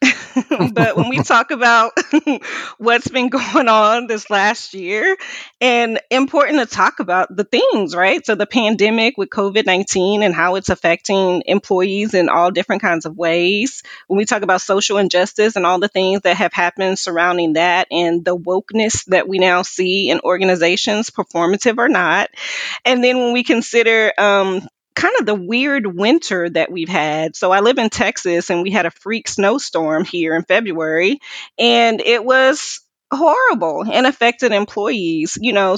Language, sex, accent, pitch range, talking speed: English, female, American, 180-235 Hz, 170 wpm